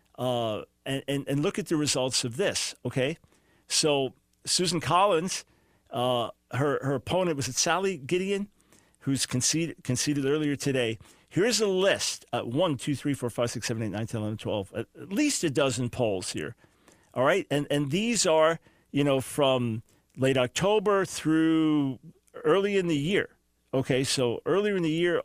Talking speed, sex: 170 wpm, male